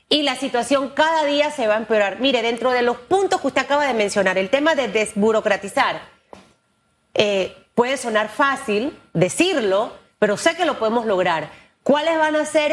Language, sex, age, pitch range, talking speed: Spanish, female, 40-59, 235-305 Hz, 180 wpm